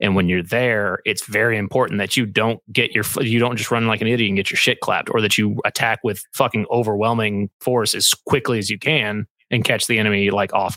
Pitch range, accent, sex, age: 105-120 Hz, American, male, 30-49